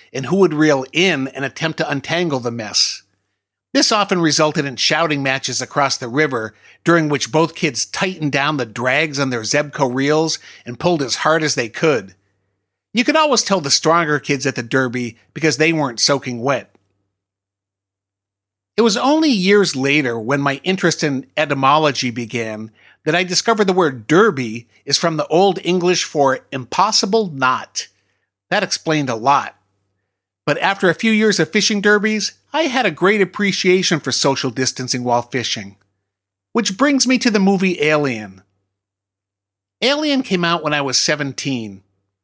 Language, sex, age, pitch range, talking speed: English, male, 50-69, 115-180 Hz, 165 wpm